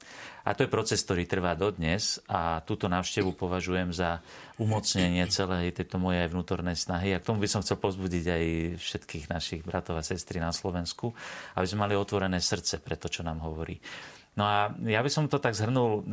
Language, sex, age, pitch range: Slovak, male, 40-59, 90-105 Hz